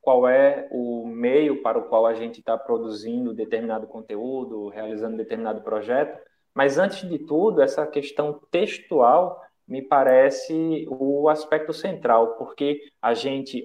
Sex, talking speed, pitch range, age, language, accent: male, 135 wpm, 120-175 Hz, 20-39, Portuguese, Brazilian